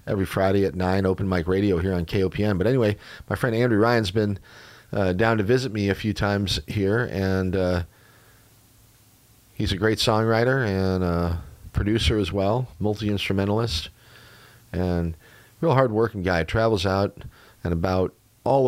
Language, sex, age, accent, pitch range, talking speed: English, male, 40-59, American, 90-110 Hz, 150 wpm